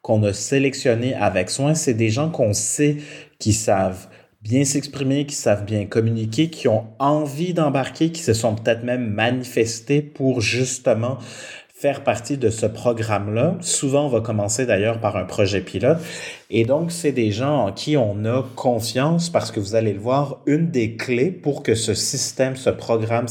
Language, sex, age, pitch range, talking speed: French, male, 30-49, 110-145 Hz, 180 wpm